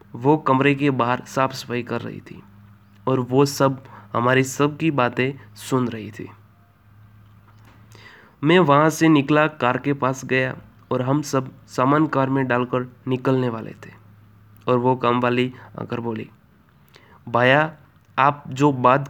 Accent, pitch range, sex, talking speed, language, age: native, 115-140 Hz, male, 150 wpm, Hindi, 20-39